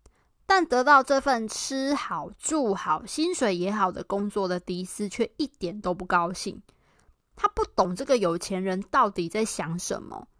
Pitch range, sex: 185-245 Hz, female